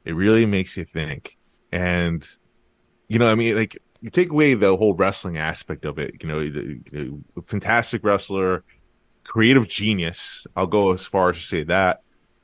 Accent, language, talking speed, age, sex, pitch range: American, English, 165 wpm, 20-39, male, 85-105 Hz